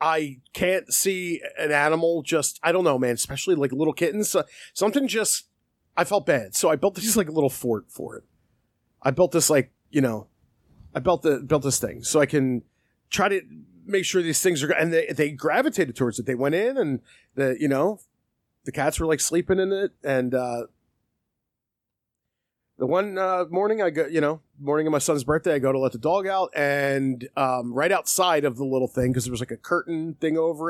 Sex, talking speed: male, 215 wpm